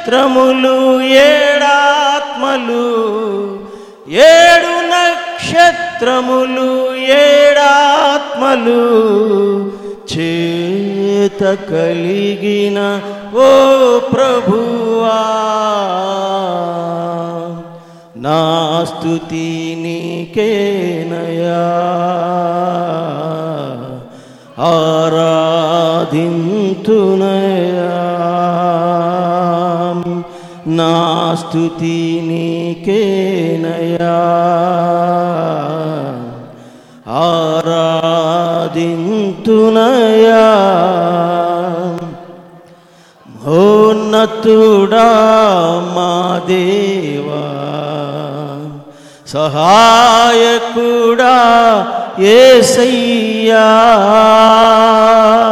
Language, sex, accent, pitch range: Telugu, male, native, 170-225 Hz